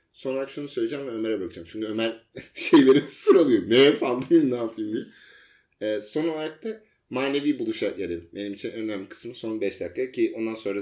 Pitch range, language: 115-185 Hz, Turkish